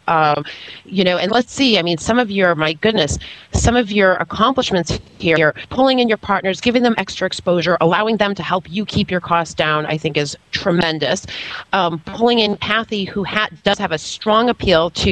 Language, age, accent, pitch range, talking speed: English, 30-49, American, 170-210 Hz, 200 wpm